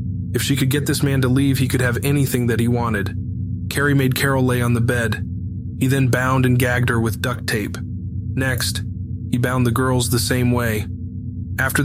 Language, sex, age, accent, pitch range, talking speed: English, male, 20-39, American, 105-130 Hz, 205 wpm